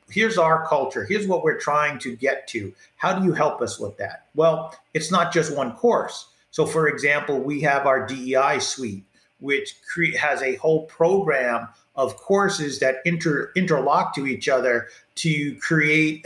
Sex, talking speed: male, 165 wpm